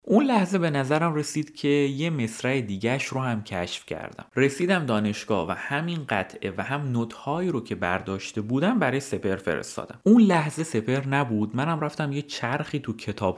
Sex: male